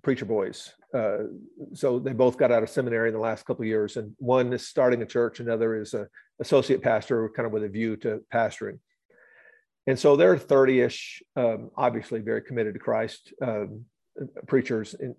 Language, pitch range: English, 120-155 Hz